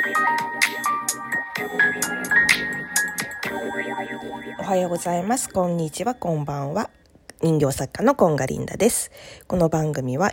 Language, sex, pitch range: Japanese, female, 145-210 Hz